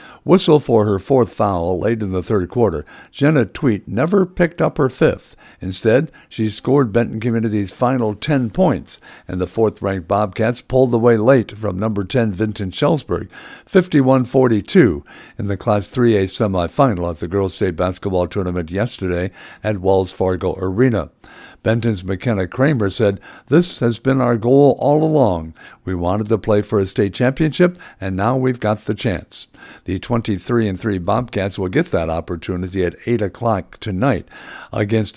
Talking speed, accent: 155 wpm, American